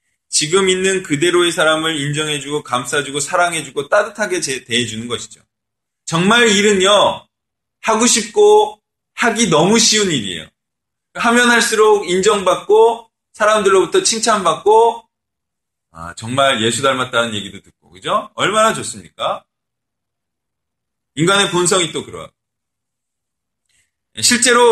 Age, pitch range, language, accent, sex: 20-39, 145-215 Hz, Korean, native, male